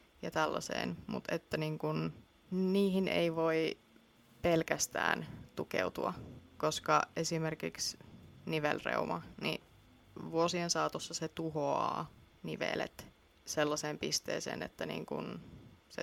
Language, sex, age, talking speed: Finnish, female, 20-39, 95 wpm